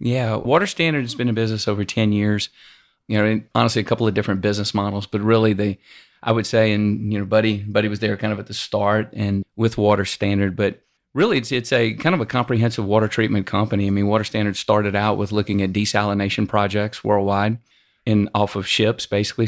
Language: English